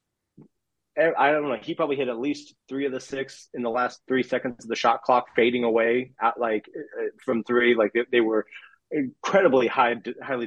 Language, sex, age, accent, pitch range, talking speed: English, male, 30-49, American, 105-130 Hz, 195 wpm